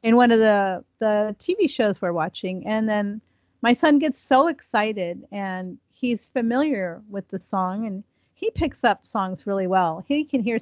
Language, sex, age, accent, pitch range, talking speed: English, female, 40-59, American, 200-250 Hz, 180 wpm